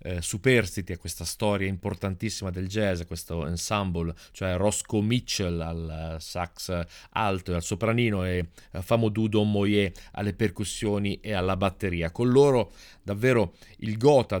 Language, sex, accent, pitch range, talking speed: Italian, male, native, 90-105 Hz, 150 wpm